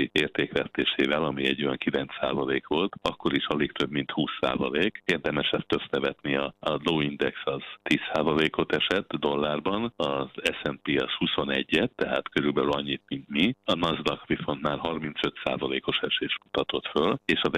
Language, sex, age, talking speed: Hungarian, male, 60-79, 135 wpm